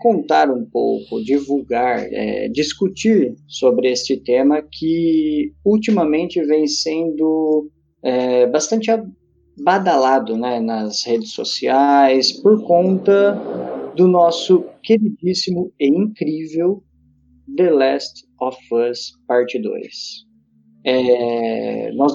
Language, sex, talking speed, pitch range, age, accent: Portuguese, male, 95 wpm, 125-185 Hz, 20-39, Brazilian